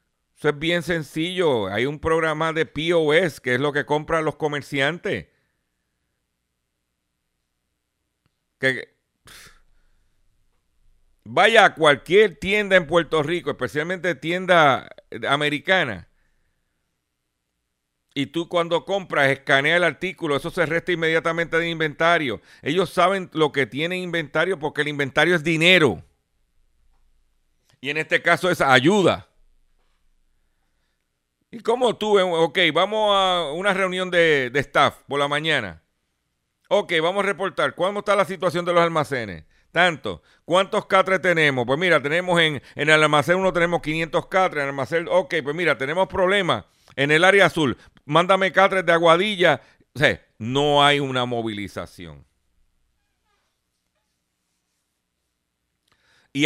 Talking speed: 130 wpm